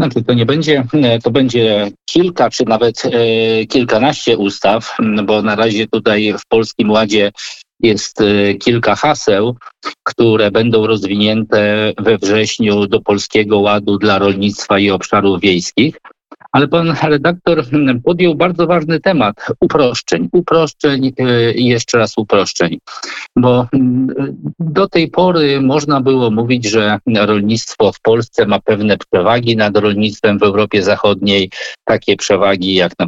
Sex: male